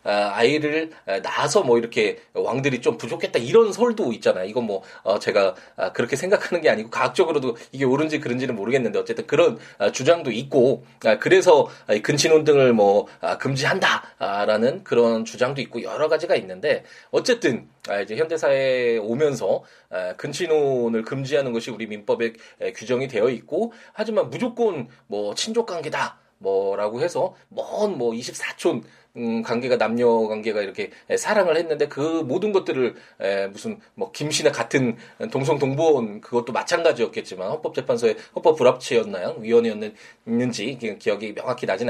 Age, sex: 20-39, male